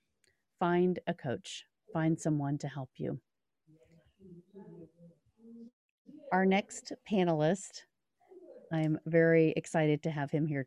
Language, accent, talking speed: English, American, 100 wpm